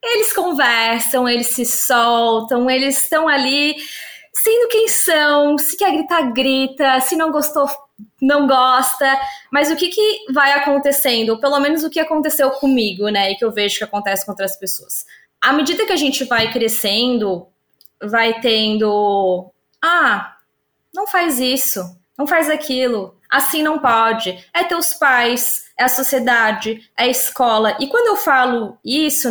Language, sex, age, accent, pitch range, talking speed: Portuguese, female, 20-39, Brazilian, 235-315 Hz, 155 wpm